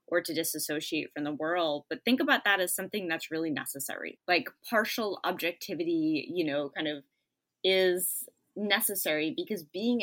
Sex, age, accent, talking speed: female, 20-39, American, 155 wpm